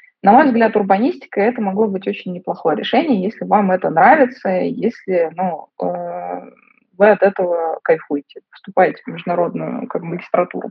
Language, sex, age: Russian, female, 20-39